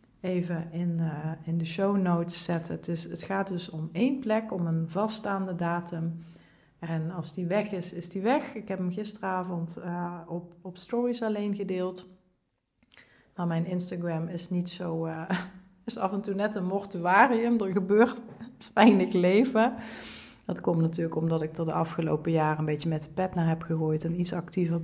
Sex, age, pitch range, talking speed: female, 40-59, 165-200 Hz, 185 wpm